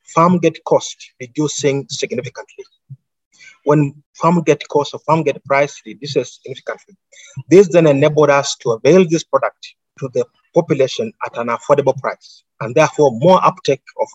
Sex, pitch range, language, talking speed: male, 135-165 Hz, English, 150 wpm